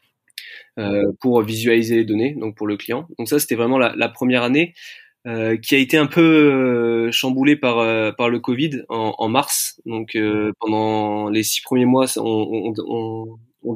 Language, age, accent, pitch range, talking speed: French, 20-39, French, 110-130 Hz, 190 wpm